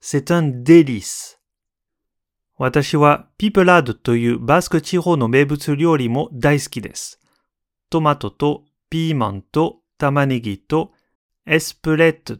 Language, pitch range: Japanese, 120-155 Hz